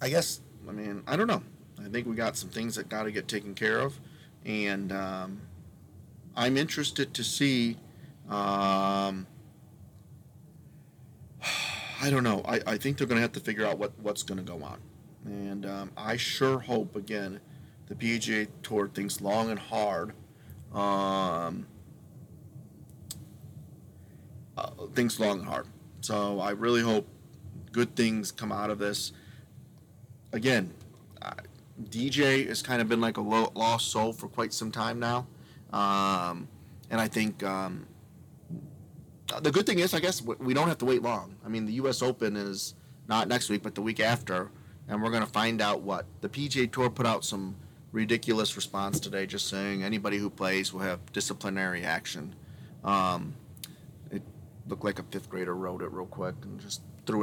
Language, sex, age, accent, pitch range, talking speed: English, male, 40-59, American, 100-125 Hz, 165 wpm